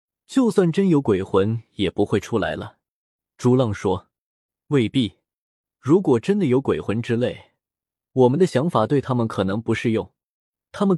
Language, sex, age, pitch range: Chinese, male, 20-39, 110-155 Hz